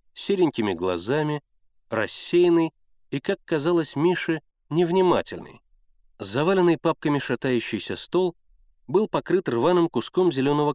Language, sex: Russian, male